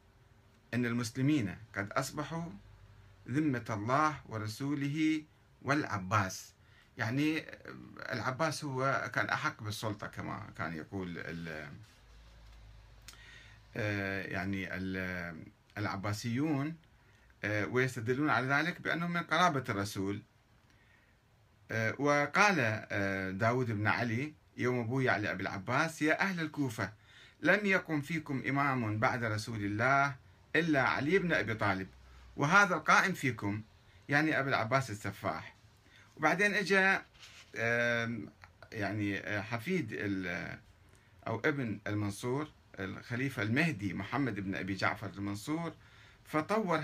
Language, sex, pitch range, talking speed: Arabic, male, 100-145 Hz, 90 wpm